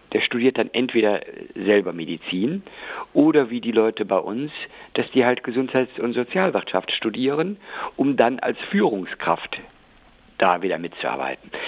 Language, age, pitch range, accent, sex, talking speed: German, 50-69, 105-130 Hz, German, male, 135 wpm